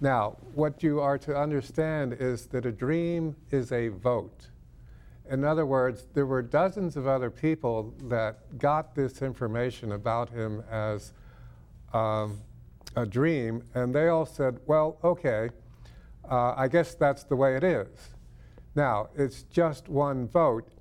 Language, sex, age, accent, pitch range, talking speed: English, male, 50-69, American, 115-140 Hz, 145 wpm